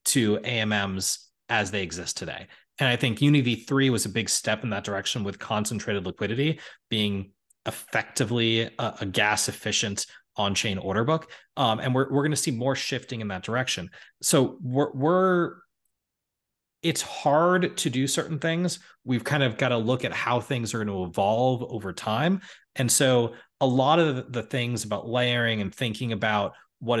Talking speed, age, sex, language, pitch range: 170 wpm, 30-49, male, English, 105-135 Hz